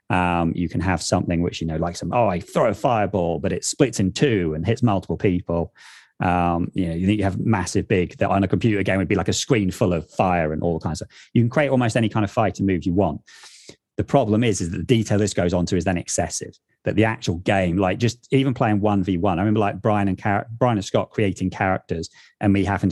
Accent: British